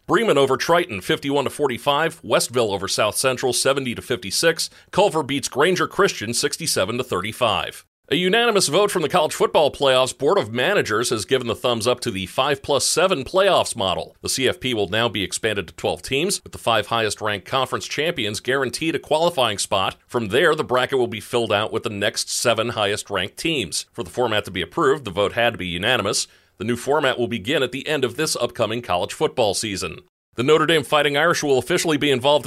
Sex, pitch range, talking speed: male, 110-145 Hz, 190 wpm